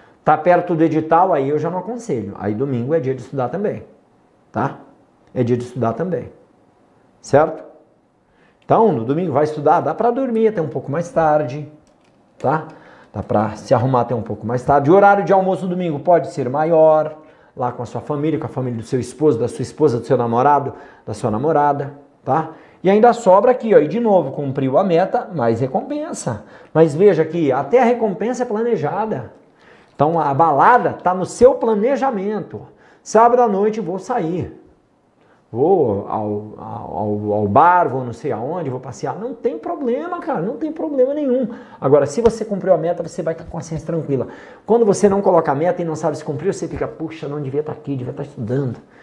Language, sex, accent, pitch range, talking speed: Portuguese, male, Brazilian, 140-210 Hz, 195 wpm